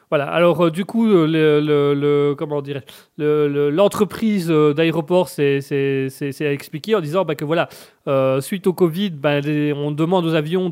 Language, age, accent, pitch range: French, 30-49, French, 145-210 Hz